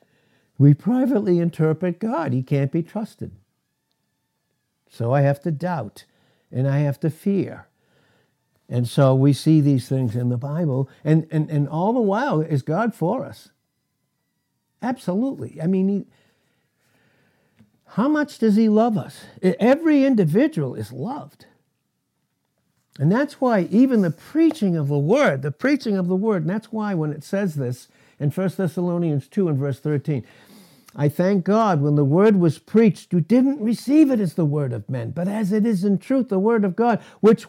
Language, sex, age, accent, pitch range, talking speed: English, male, 60-79, American, 145-220 Hz, 170 wpm